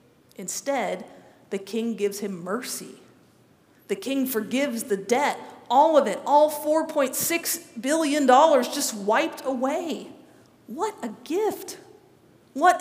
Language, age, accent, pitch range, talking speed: English, 40-59, American, 215-275 Hz, 110 wpm